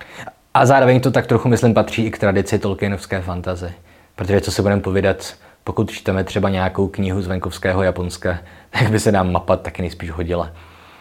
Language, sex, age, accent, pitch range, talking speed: Czech, male, 20-39, native, 90-105 Hz, 180 wpm